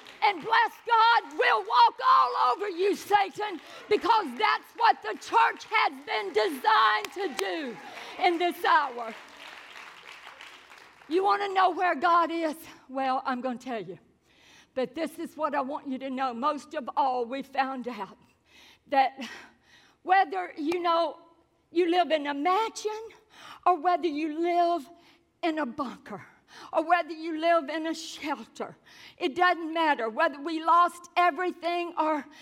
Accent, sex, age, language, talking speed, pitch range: American, female, 50-69, English, 150 wpm, 295-375 Hz